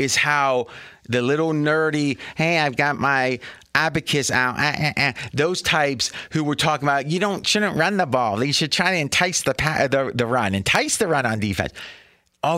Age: 30-49